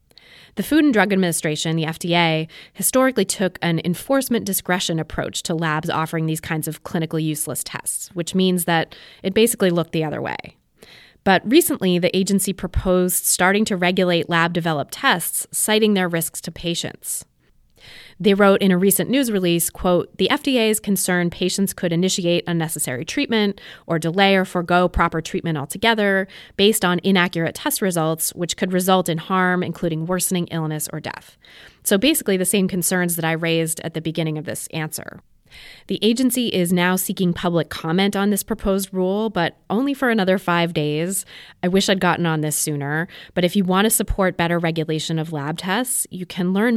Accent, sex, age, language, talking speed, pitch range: American, female, 20-39, English, 175 wpm, 165-195 Hz